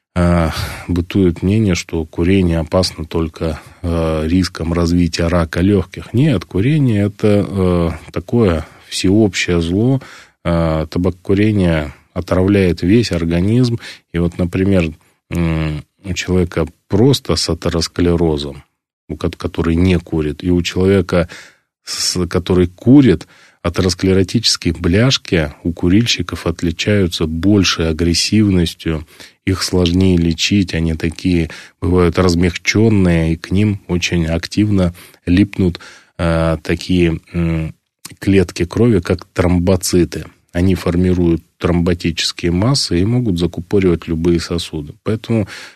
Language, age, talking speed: Russian, 20-39, 95 wpm